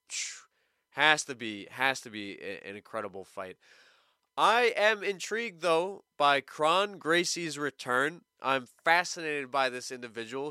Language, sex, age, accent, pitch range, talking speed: English, male, 20-39, American, 130-200 Hz, 125 wpm